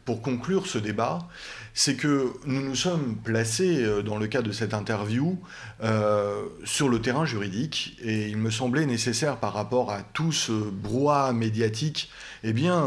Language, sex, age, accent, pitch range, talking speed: French, male, 30-49, French, 110-140 Hz, 170 wpm